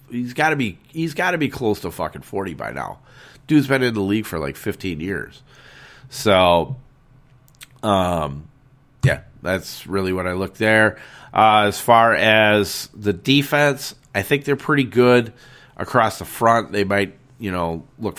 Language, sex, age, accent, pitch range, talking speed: English, male, 30-49, American, 105-135 Hz, 170 wpm